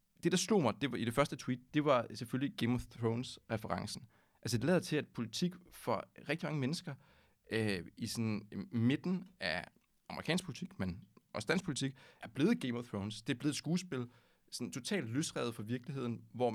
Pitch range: 110-150 Hz